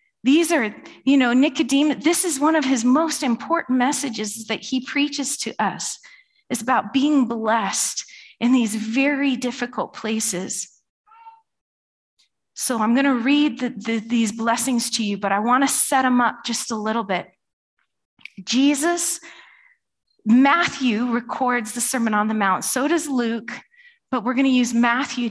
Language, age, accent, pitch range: English, 30-49, American, 230-290 Hz